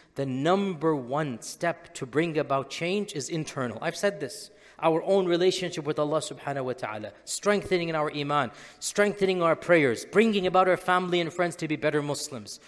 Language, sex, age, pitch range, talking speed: English, male, 40-59, 170-230 Hz, 175 wpm